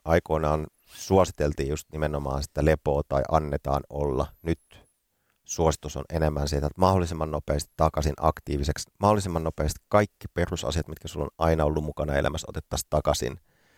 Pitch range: 75-90 Hz